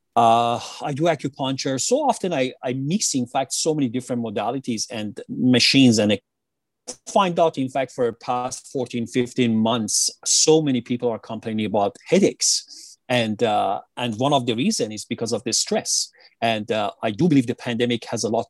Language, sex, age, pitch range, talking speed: English, male, 40-59, 120-140 Hz, 190 wpm